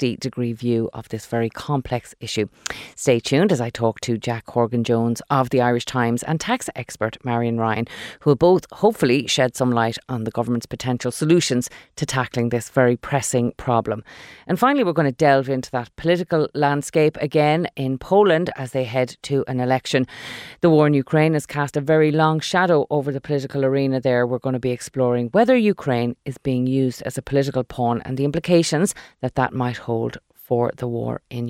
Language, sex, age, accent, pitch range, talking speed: English, female, 30-49, Irish, 125-155 Hz, 190 wpm